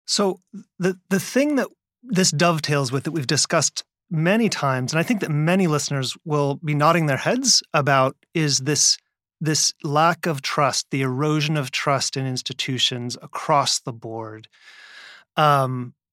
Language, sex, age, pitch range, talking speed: English, male, 30-49, 135-170 Hz, 155 wpm